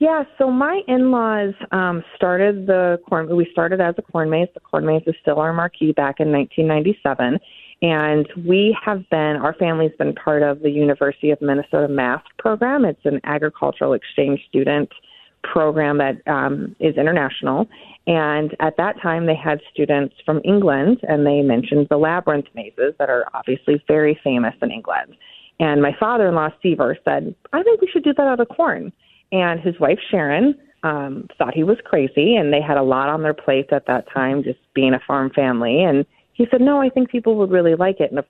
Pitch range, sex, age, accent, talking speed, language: 145-185 Hz, female, 30-49, American, 190 wpm, English